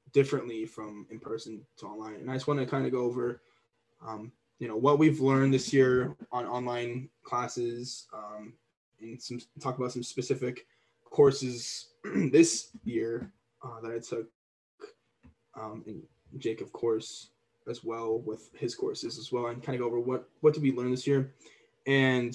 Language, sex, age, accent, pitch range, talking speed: English, male, 10-29, American, 120-145 Hz, 175 wpm